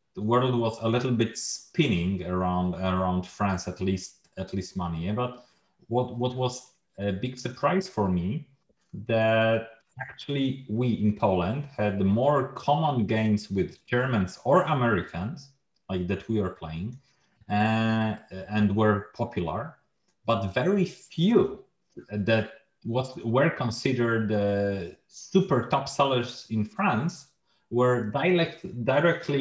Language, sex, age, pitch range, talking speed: Polish, male, 30-49, 100-135 Hz, 130 wpm